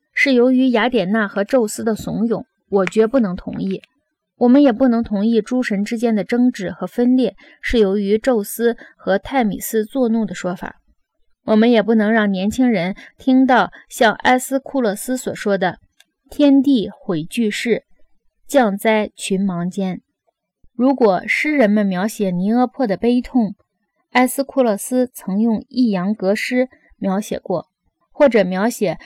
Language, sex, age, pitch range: Chinese, female, 20-39, 200-250 Hz